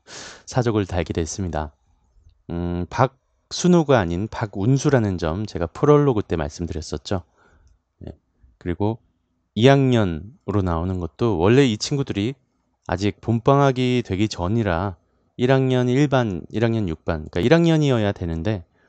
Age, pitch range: 30-49, 85-125 Hz